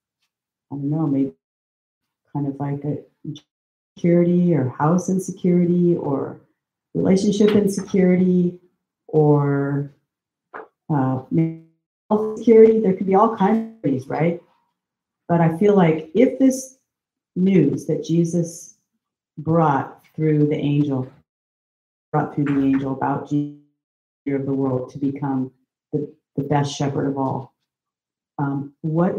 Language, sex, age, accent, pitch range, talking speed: English, female, 40-59, American, 140-170 Hz, 120 wpm